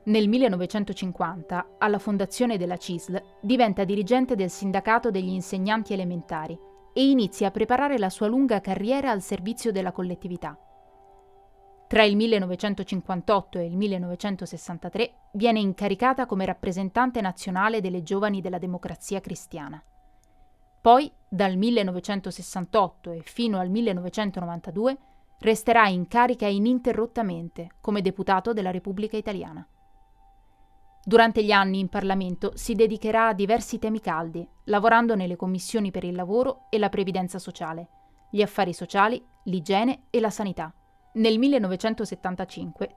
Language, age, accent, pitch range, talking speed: Italian, 30-49, native, 185-230 Hz, 120 wpm